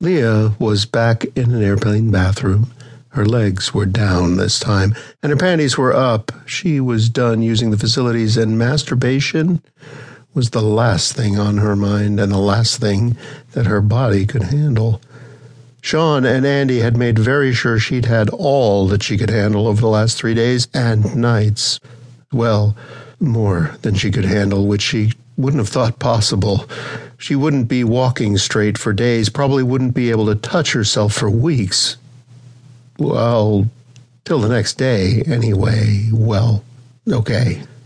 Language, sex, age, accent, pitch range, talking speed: English, male, 60-79, American, 110-130 Hz, 155 wpm